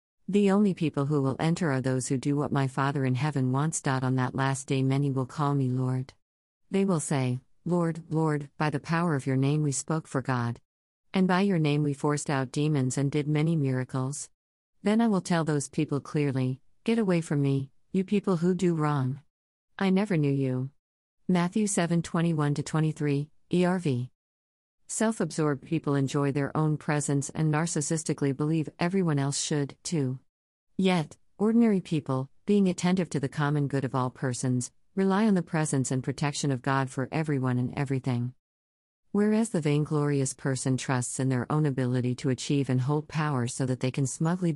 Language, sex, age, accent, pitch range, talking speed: English, female, 50-69, American, 130-160 Hz, 175 wpm